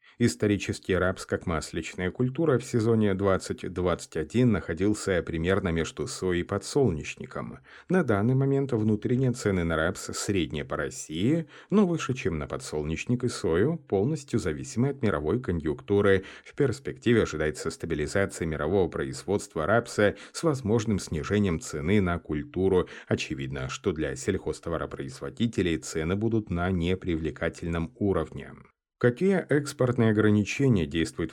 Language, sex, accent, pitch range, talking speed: Russian, male, native, 85-115 Hz, 120 wpm